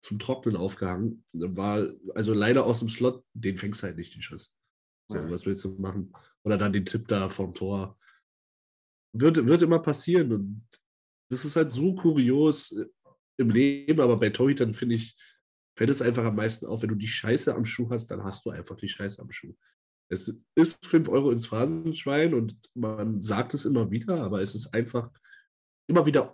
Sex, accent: male, German